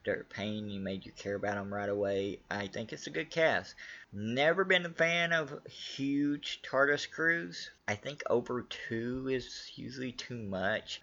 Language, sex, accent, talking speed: English, male, American, 175 wpm